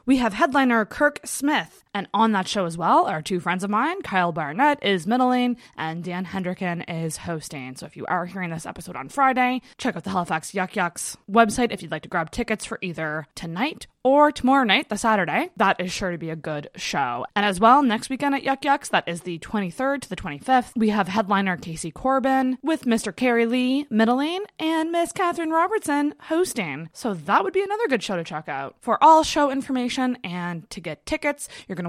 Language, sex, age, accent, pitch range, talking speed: English, female, 20-39, American, 175-255 Hz, 215 wpm